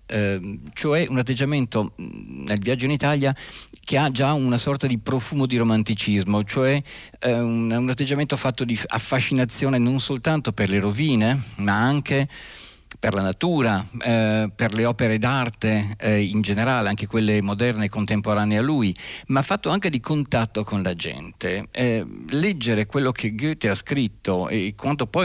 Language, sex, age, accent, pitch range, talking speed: Italian, male, 50-69, native, 105-130 Hz, 150 wpm